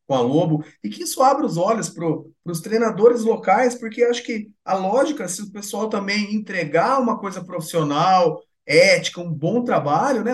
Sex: male